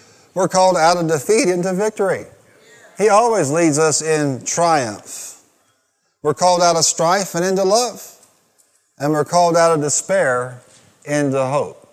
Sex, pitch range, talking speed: male, 155-195 Hz, 145 wpm